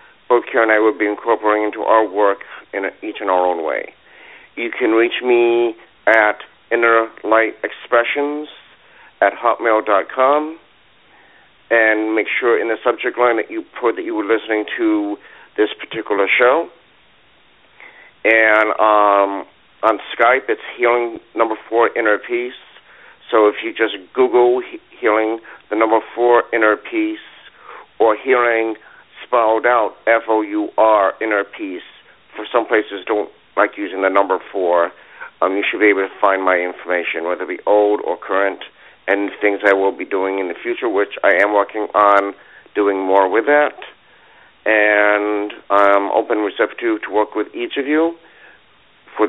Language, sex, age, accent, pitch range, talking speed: English, male, 50-69, American, 105-145 Hz, 155 wpm